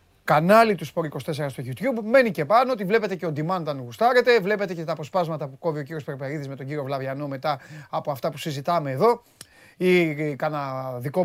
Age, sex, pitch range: 30-49, male, 135-180 Hz